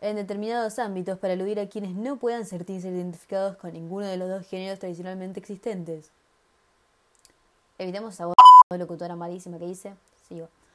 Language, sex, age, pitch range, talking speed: Spanish, female, 20-39, 175-220 Hz, 150 wpm